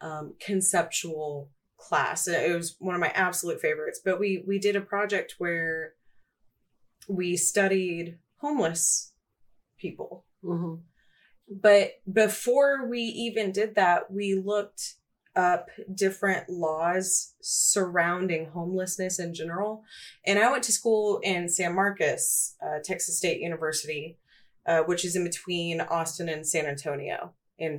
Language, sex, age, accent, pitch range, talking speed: English, female, 30-49, American, 165-205 Hz, 130 wpm